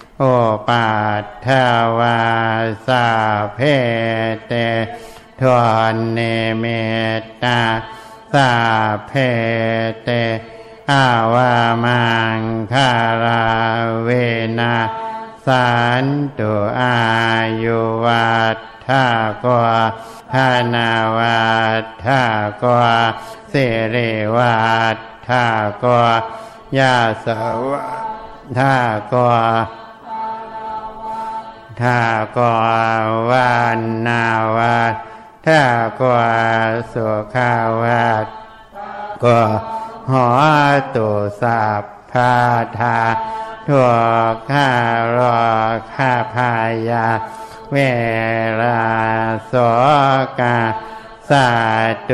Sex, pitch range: male, 115-130 Hz